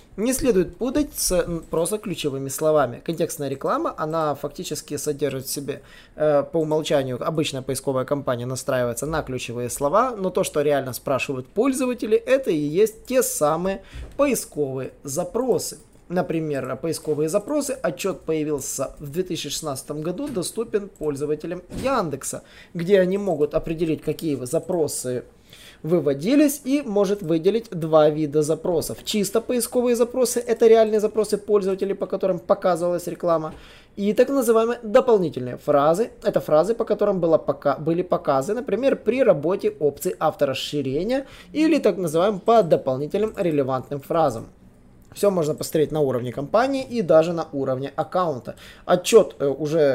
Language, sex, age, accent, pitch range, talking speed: Russian, male, 20-39, native, 145-210 Hz, 130 wpm